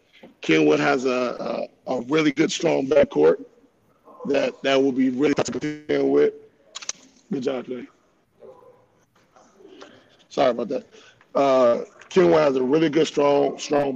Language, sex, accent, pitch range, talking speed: English, male, American, 130-150 Hz, 130 wpm